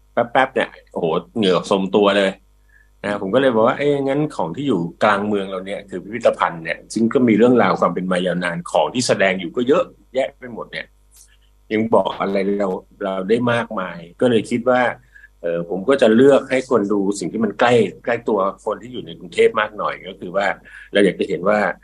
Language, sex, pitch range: English, male, 90-115 Hz